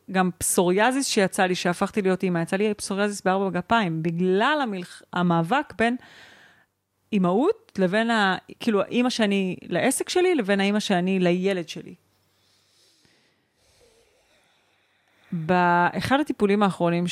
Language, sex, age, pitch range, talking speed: Hebrew, female, 30-49, 170-230 Hz, 110 wpm